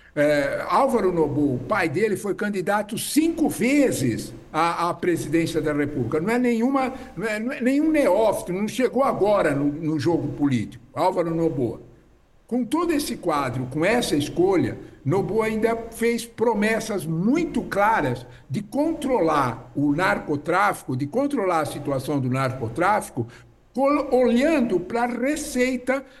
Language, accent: English, Brazilian